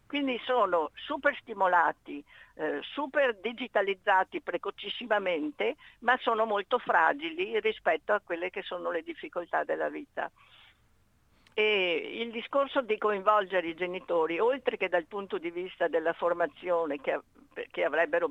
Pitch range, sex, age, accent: 185-265 Hz, female, 50-69, native